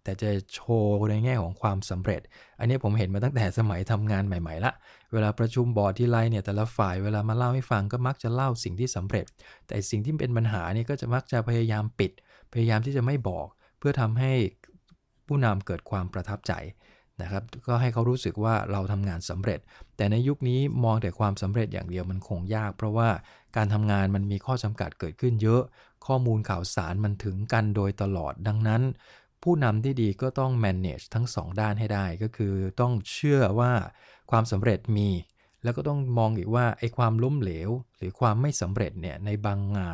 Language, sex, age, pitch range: English, male, 20-39, 100-120 Hz